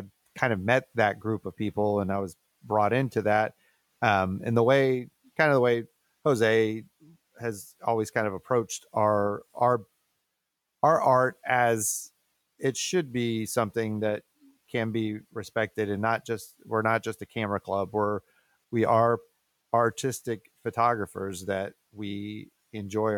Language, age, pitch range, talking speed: English, 30-49, 105-115 Hz, 150 wpm